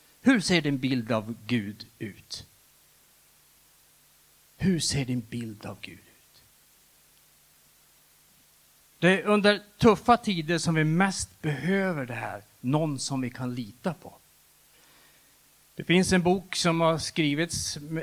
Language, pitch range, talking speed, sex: Swedish, 115-155 Hz, 125 wpm, male